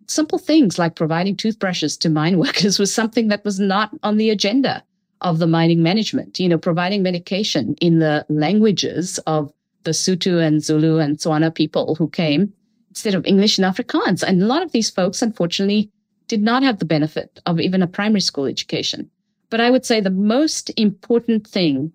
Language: English